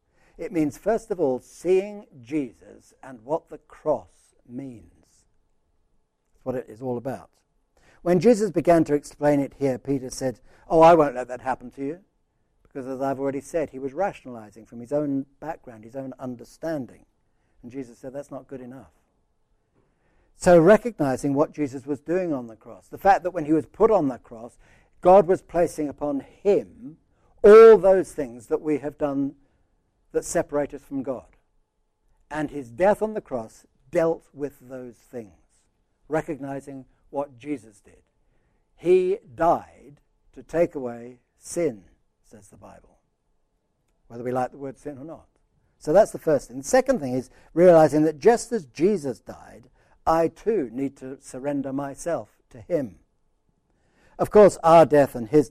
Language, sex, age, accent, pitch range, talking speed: English, male, 60-79, British, 125-160 Hz, 165 wpm